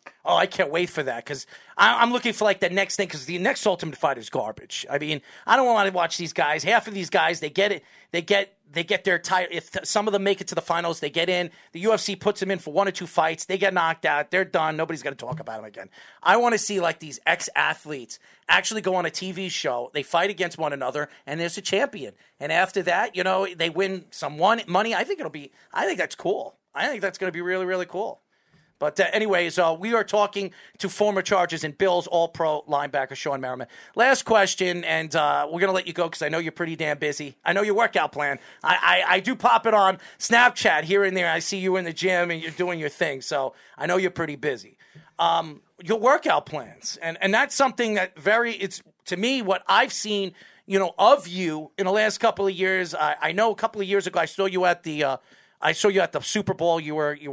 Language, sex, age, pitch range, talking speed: English, male, 40-59, 160-200 Hz, 255 wpm